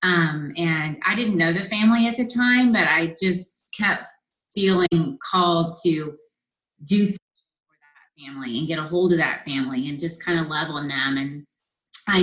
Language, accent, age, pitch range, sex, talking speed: English, American, 30-49, 165-200 Hz, female, 180 wpm